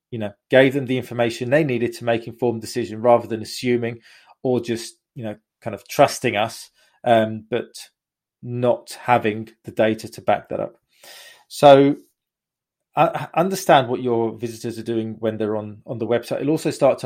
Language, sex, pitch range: English, male, 110-125 Hz